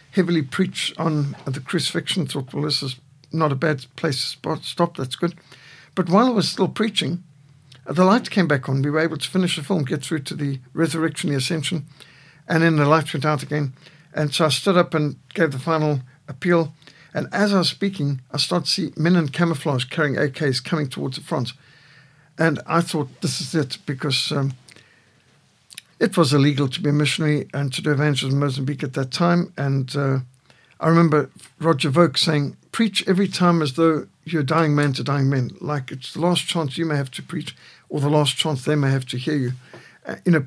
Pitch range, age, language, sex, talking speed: 140-165 Hz, 60-79, English, male, 210 wpm